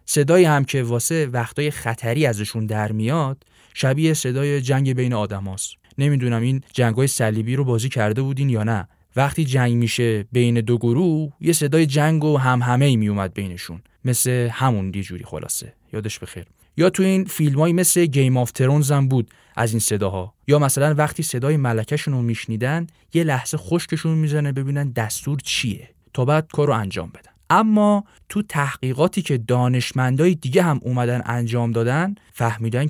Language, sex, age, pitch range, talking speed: Persian, male, 10-29, 110-145 Hz, 160 wpm